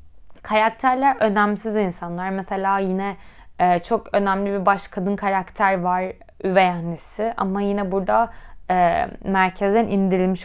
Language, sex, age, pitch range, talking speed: Turkish, female, 20-39, 185-255 Hz, 120 wpm